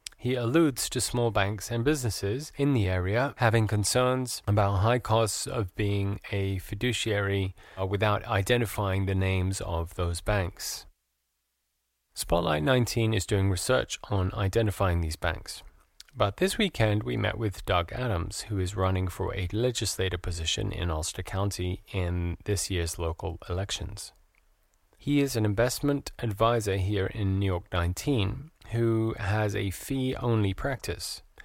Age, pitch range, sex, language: 30-49, 90-115 Hz, male, English